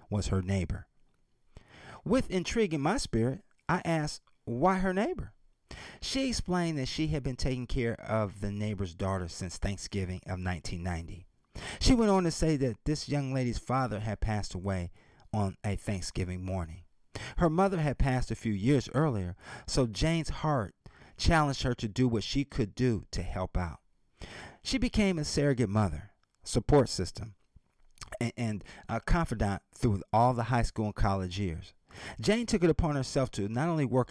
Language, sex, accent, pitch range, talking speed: English, male, American, 95-130 Hz, 165 wpm